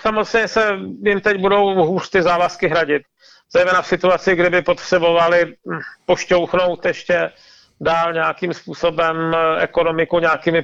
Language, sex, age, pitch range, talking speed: Czech, male, 40-59, 165-185 Hz, 120 wpm